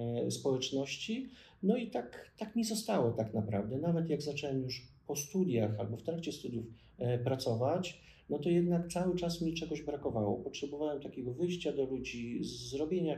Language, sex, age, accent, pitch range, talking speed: Polish, male, 40-59, native, 115-140 Hz, 155 wpm